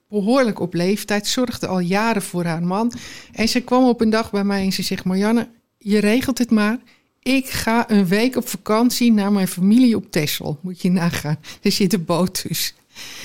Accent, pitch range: Dutch, 175-230 Hz